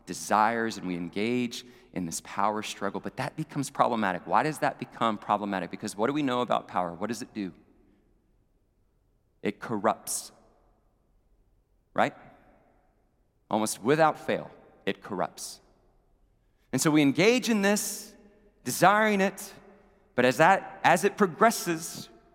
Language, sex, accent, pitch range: English, male, American, 105-155 Hz